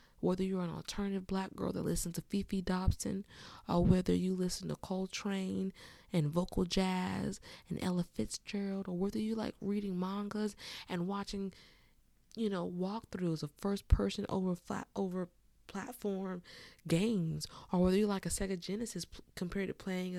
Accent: American